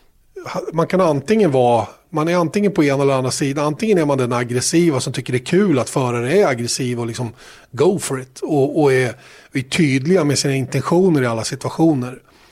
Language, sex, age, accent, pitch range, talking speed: Swedish, male, 30-49, native, 125-175 Hz, 200 wpm